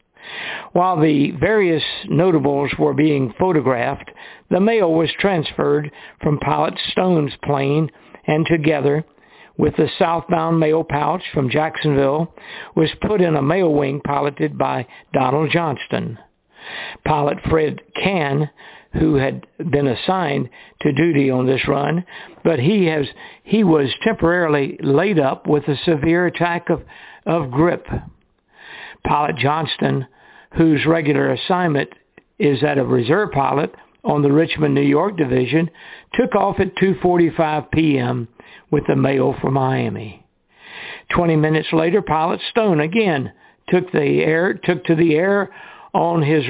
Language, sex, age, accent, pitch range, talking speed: English, male, 60-79, American, 145-170 Hz, 130 wpm